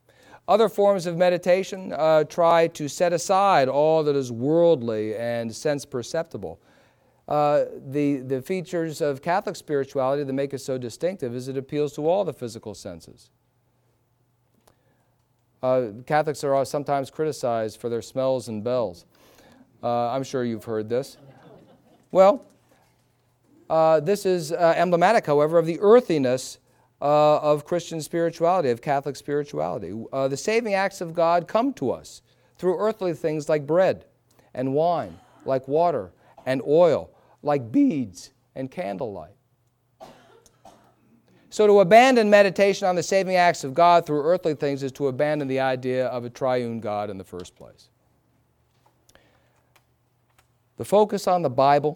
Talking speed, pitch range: 145 wpm, 125-170 Hz